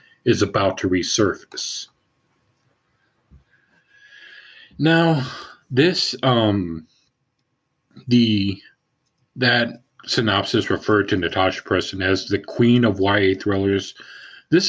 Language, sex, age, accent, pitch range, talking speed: English, male, 40-59, American, 100-135 Hz, 85 wpm